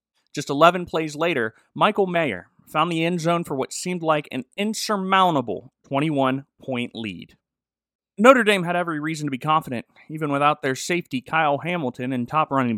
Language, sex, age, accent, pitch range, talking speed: English, male, 30-49, American, 135-175 Hz, 165 wpm